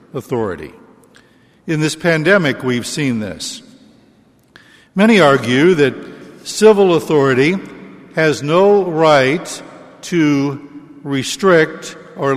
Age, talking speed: 60-79, 85 wpm